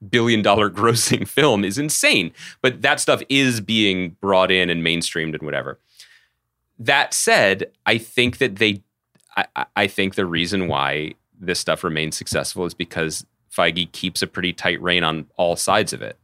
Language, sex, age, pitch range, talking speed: English, male, 30-49, 80-100 Hz, 170 wpm